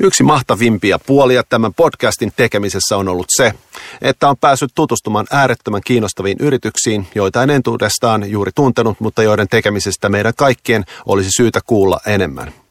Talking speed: 140 wpm